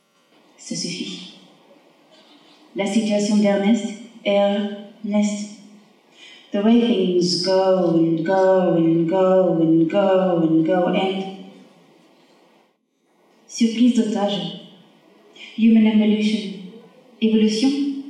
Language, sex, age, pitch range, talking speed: English, female, 30-49, 190-220 Hz, 75 wpm